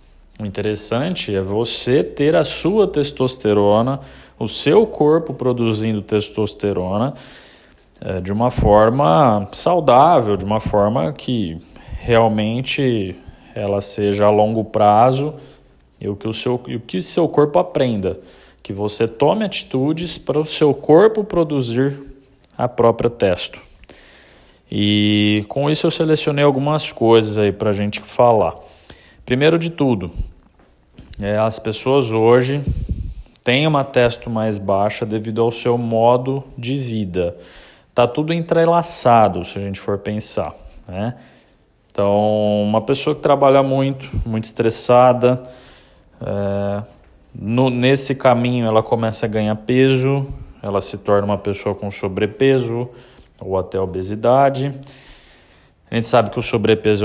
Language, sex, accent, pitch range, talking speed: Portuguese, male, Brazilian, 100-135 Hz, 120 wpm